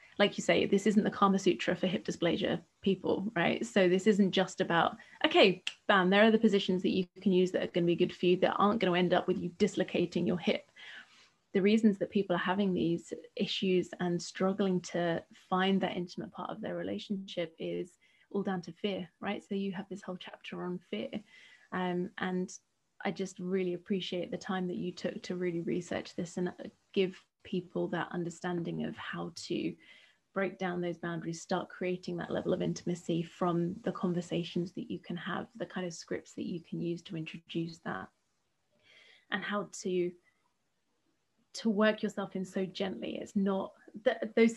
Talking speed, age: 190 wpm, 20-39